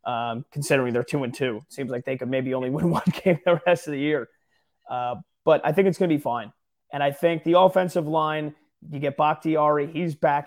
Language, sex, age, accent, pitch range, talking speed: English, male, 30-49, American, 140-175 Hz, 230 wpm